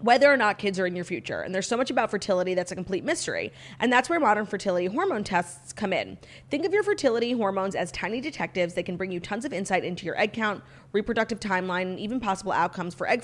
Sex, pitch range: female, 180-230 Hz